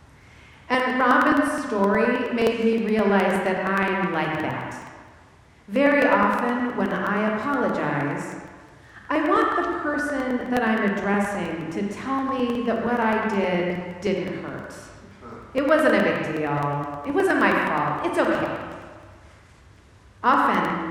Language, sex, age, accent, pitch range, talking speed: English, female, 40-59, American, 160-255 Hz, 125 wpm